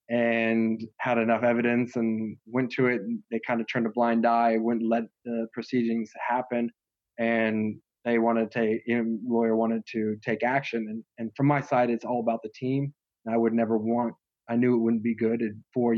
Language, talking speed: English, 190 wpm